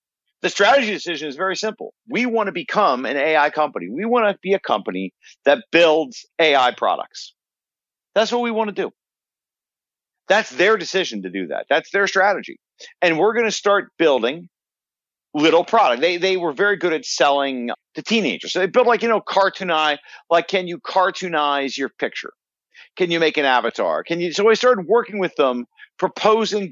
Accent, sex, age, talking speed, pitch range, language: American, male, 50-69, 185 wpm, 140-205 Hz, English